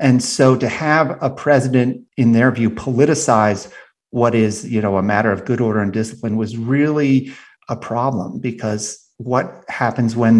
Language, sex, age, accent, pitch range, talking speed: English, male, 40-59, American, 110-130 Hz, 165 wpm